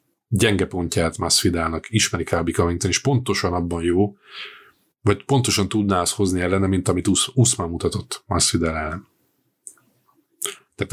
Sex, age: male, 30-49